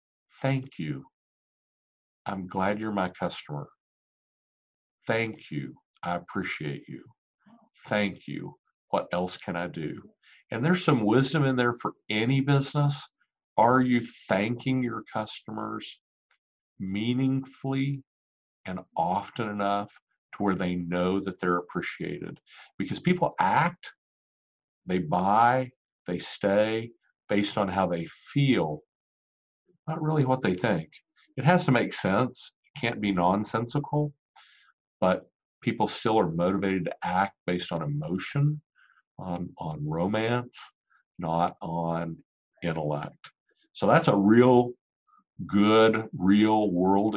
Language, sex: English, male